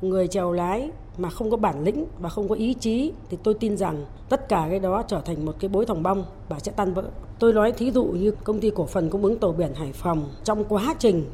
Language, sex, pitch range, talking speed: Vietnamese, female, 180-220 Hz, 265 wpm